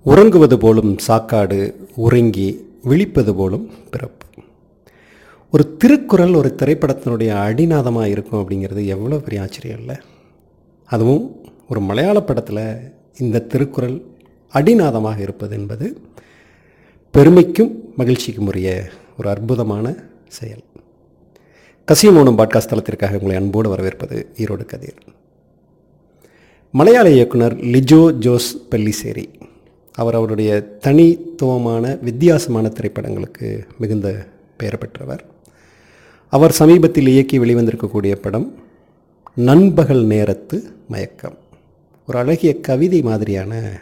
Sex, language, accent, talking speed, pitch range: male, Tamil, native, 90 wpm, 105-140 Hz